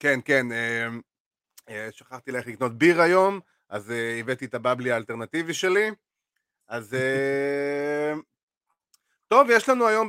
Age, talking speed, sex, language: 30-49, 105 wpm, male, Hebrew